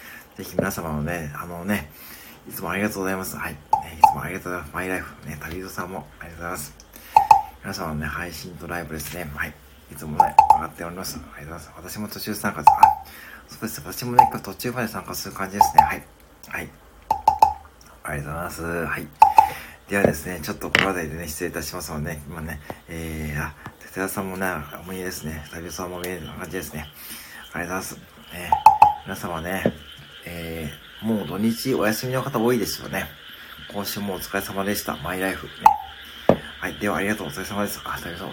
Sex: male